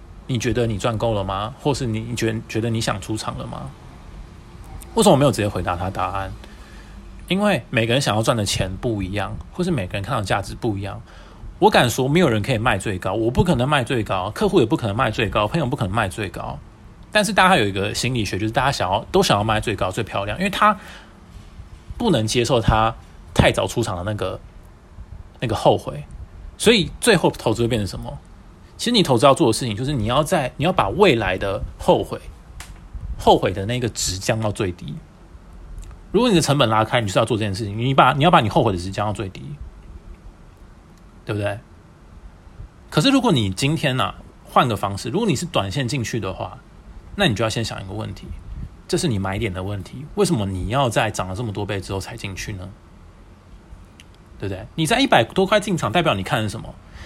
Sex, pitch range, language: male, 95-130 Hz, English